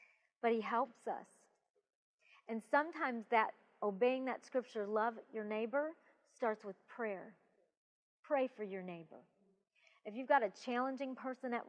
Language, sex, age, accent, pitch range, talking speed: English, female, 40-59, American, 230-335 Hz, 140 wpm